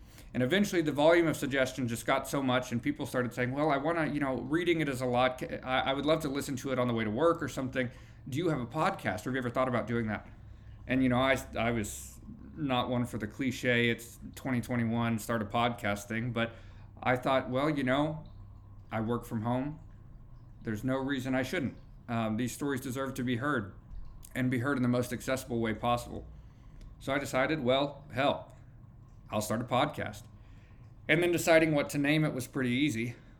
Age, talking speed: 50-69, 215 wpm